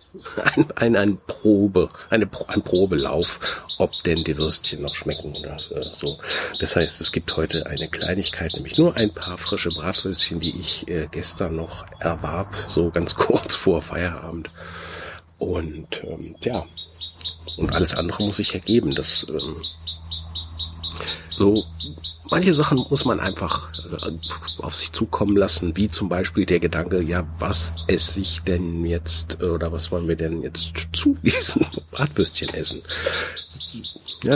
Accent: German